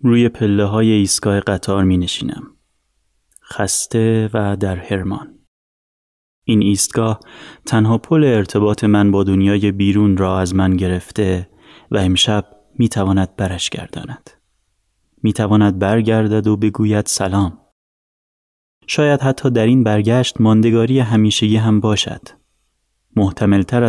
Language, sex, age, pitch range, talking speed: Persian, male, 30-49, 100-115 Hz, 105 wpm